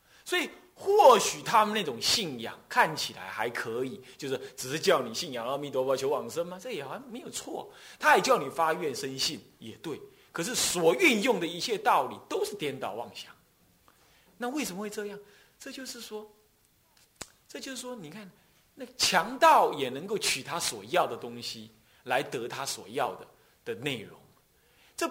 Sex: male